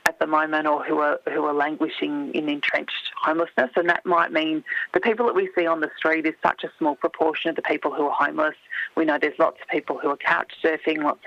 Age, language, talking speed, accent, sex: 30-49, English, 245 wpm, Australian, female